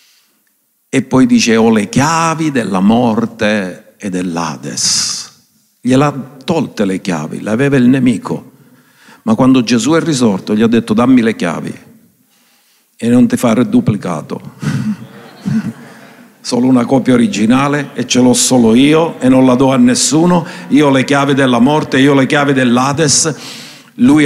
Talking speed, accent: 155 wpm, native